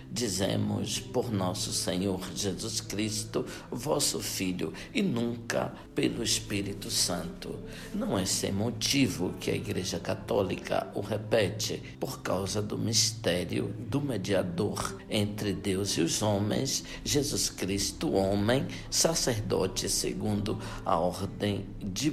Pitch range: 95-115 Hz